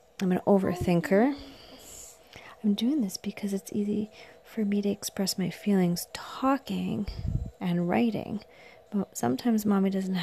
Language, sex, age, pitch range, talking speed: English, female, 30-49, 175-210 Hz, 130 wpm